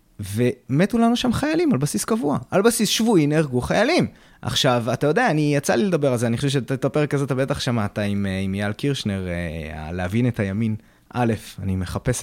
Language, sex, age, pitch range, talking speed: Hebrew, male, 20-39, 105-175 Hz, 185 wpm